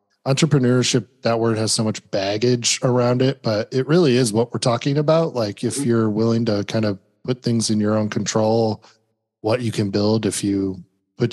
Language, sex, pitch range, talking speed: English, male, 105-130 Hz, 195 wpm